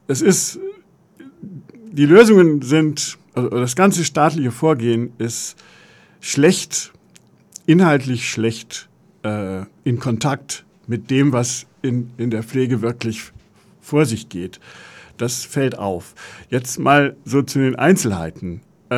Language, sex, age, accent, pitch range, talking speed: German, male, 50-69, German, 115-150 Hz, 115 wpm